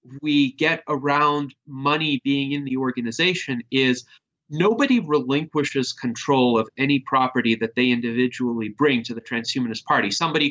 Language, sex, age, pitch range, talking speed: English, male, 30-49, 125-155 Hz, 135 wpm